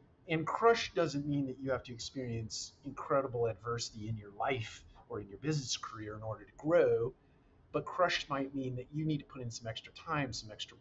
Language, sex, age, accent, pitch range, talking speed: English, male, 50-69, American, 105-130 Hz, 210 wpm